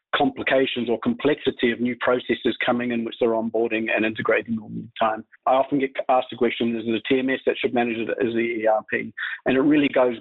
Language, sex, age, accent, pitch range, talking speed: English, male, 50-69, Australian, 115-130 Hz, 215 wpm